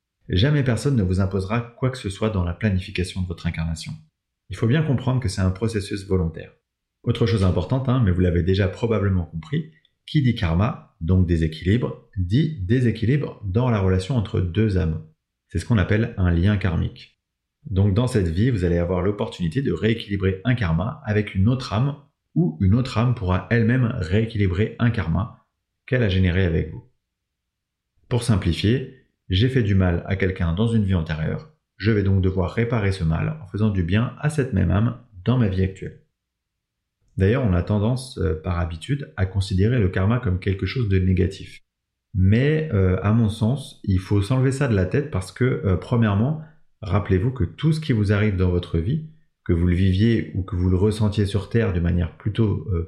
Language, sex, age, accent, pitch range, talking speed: French, male, 30-49, French, 95-120 Hz, 195 wpm